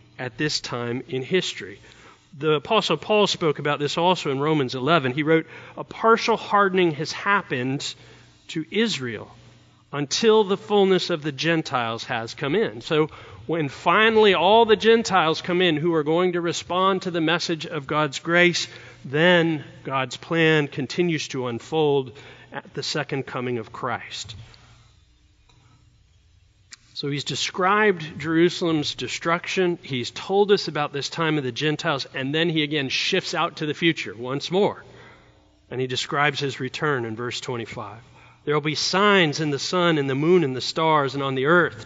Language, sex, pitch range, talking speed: English, male, 130-175 Hz, 165 wpm